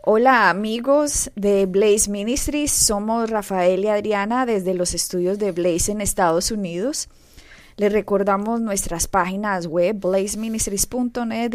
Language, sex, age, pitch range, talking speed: Spanish, female, 20-39, 190-225 Hz, 120 wpm